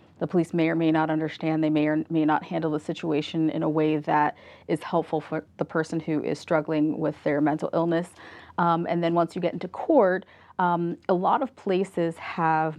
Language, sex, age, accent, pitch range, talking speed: English, female, 30-49, American, 155-170 Hz, 210 wpm